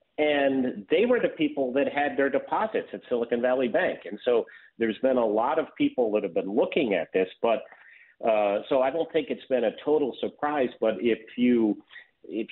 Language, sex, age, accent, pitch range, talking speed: English, male, 50-69, American, 105-140 Hz, 200 wpm